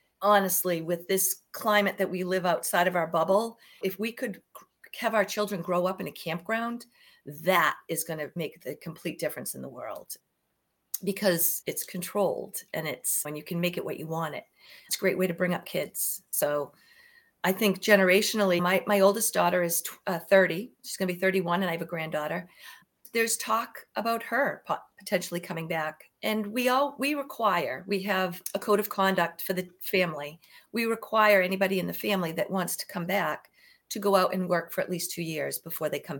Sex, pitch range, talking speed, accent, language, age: female, 170-210 Hz, 200 wpm, American, English, 40-59